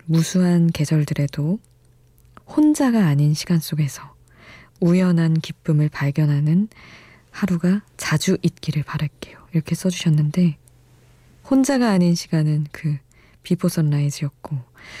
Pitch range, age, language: 145-175 Hz, 20-39, Korean